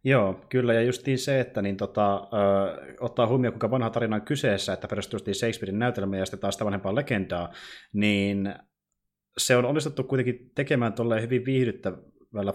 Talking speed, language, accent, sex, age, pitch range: 165 wpm, Finnish, native, male, 20-39, 95-120 Hz